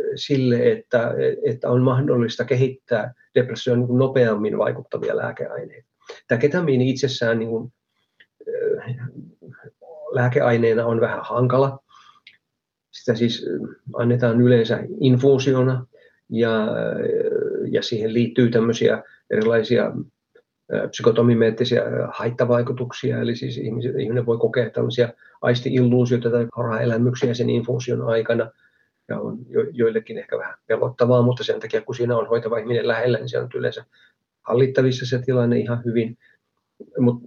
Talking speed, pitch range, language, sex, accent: 115 wpm, 120-195 Hz, Finnish, male, native